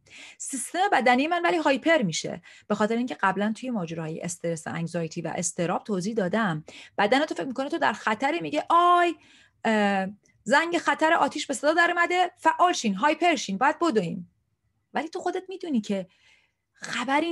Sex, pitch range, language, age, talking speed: female, 175-275 Hz, Persian, 30-49, 165 wpm